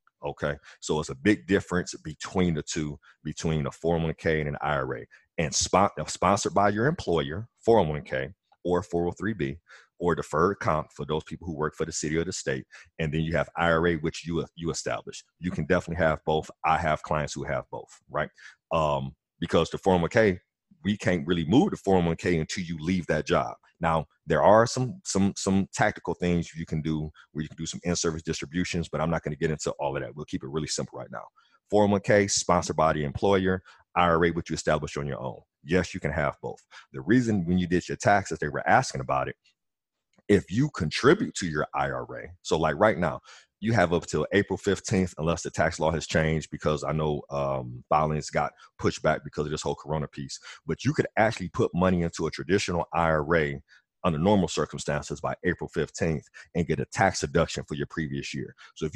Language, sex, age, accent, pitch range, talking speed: English, male, 30-49, American, 75-90 Hz, 205 wpm